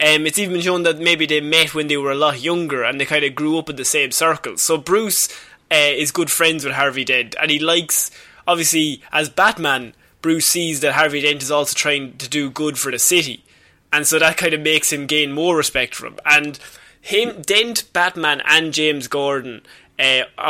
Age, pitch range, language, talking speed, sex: 20-39, 145-170 Hz, English, 210 wpm, male